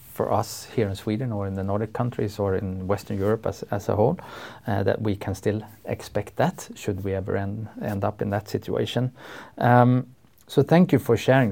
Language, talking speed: Swedish, 210 wpm